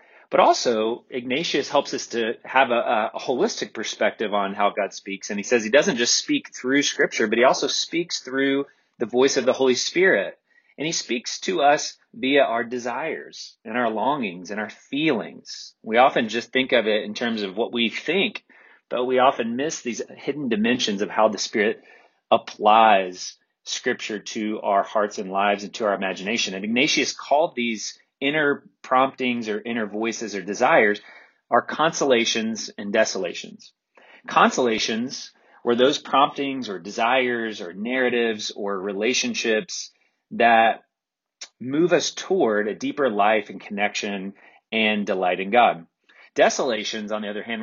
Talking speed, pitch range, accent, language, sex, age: 160 wpm, 105-130 Hz, American, English, male, 30-49